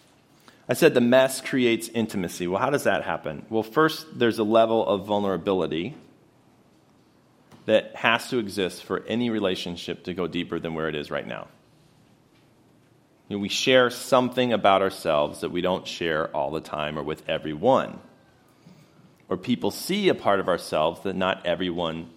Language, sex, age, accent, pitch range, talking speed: English, male, 30-49, American, 95-130 Hz, 160 wpm